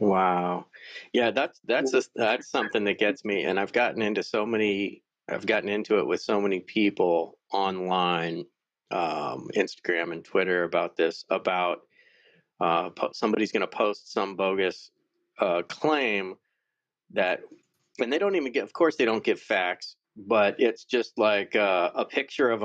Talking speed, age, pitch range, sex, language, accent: 160 wpm, 40-59, 95-125 Hz, male, English, American